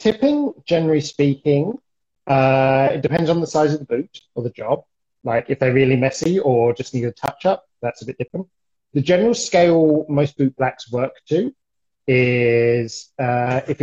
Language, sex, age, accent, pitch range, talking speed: English, male, 30-49, British, 125-155 Hz, 175 wpm